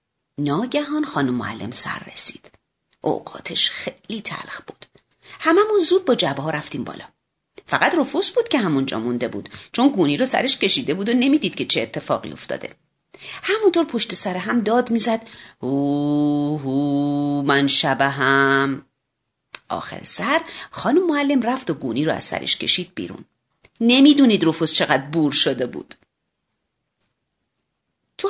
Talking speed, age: 140 wpm, 40-59